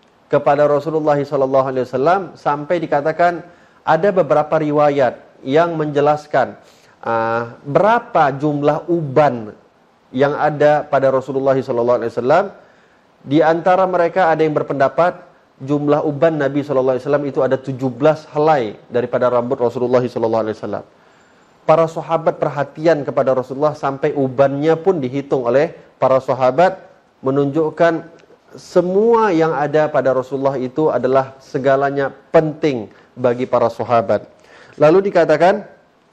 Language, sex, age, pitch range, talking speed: Indonesian, male, 30-49, 130-160 Hz, 105 wpm